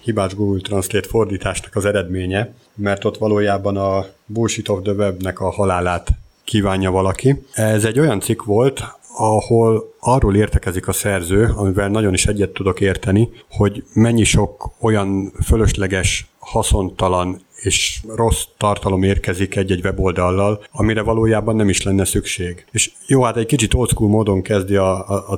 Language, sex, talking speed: Hungarian, male, 150 wpm